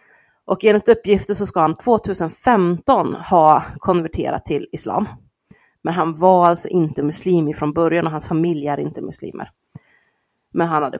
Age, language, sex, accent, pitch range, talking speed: 30-49, Swedish, female, native, 160-195 Hz, 155 wpm